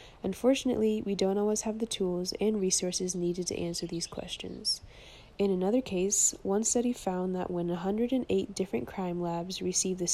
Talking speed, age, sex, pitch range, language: 165 wpm, 20-39, female, 175-205 Hz, English